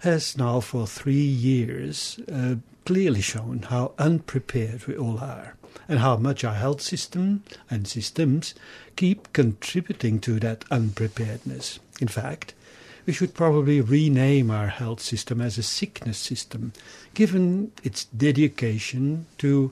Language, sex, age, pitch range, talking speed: English, male, 60-79, 115-150 Hz, 130 wpm